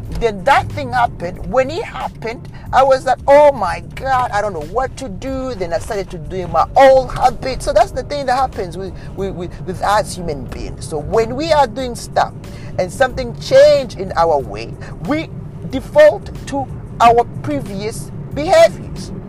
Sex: male